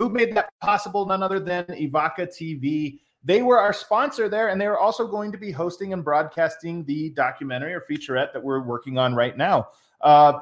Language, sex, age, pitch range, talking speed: English, male, 30-49, 150-195 Hz, 190 wpm